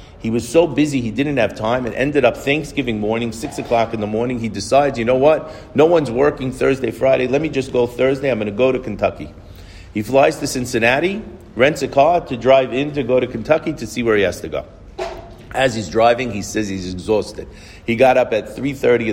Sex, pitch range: male, 110-140 Hz